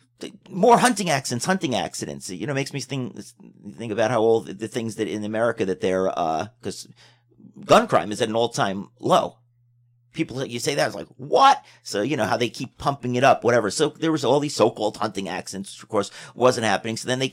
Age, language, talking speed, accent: 40-59, English, 225 wpm, American